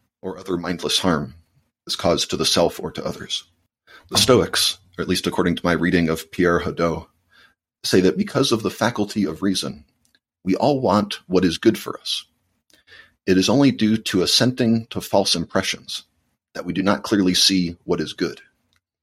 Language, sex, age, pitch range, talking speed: English, male, 40-59, 85-105 Hz, 185 wpm